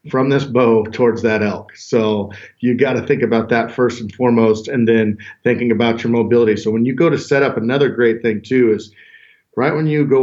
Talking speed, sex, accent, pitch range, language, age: 225 wpm, male, American, 115-130 Hz, English, 40-59